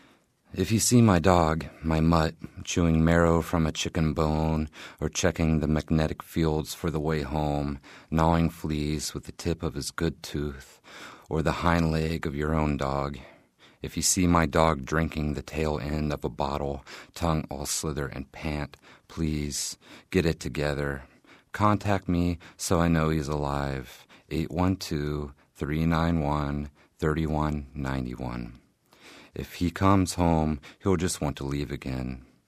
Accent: American